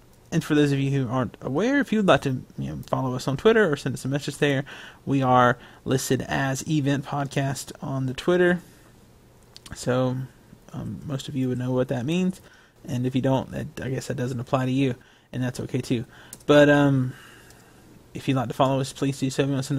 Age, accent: 20-39, American